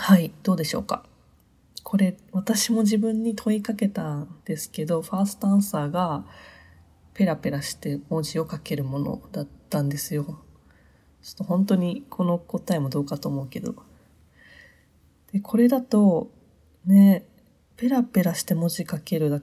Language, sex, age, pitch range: Japanese, female, 20-39, 140-195 Hz